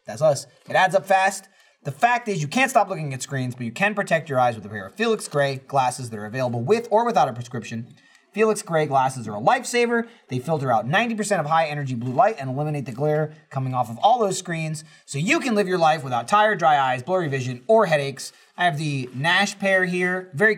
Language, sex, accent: English, male, American